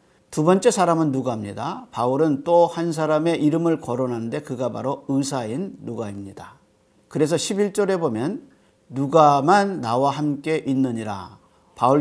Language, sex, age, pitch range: Korean, male, 50-69, 115-150 Hz